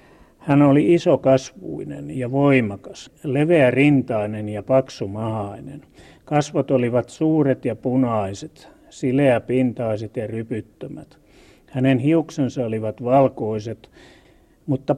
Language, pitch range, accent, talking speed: Finnish, 110-135 Hz, native, 85 wpm